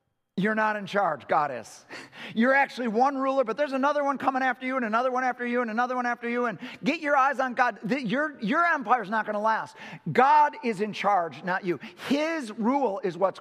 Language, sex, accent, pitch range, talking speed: English, male, American, 190-260 Hz, 230 wpm